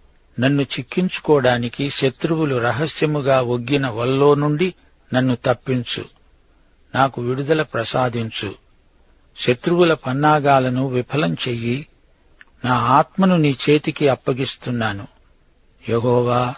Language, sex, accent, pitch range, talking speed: Telugu, male, native, 120-145 Hz, 80 wpm